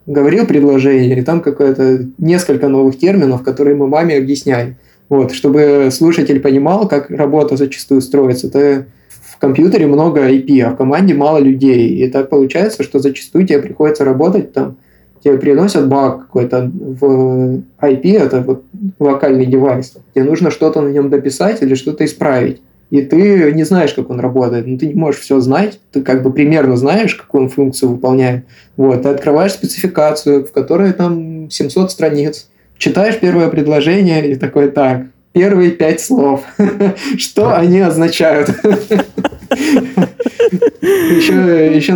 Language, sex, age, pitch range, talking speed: Russian, male, 20-39, 135-165 Hz, 145 wpm